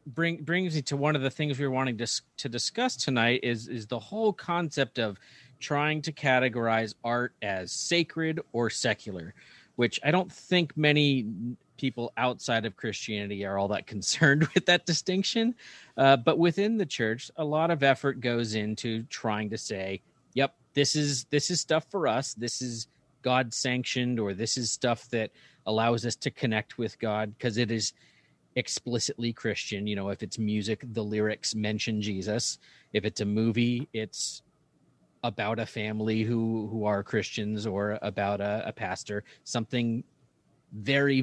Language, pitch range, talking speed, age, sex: English, 110-140 Hz, 165 wpm, 40-59, male